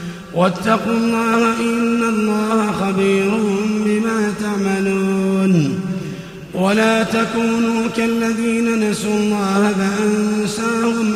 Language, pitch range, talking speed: Arabic, 195-225 Hz, 70 wpm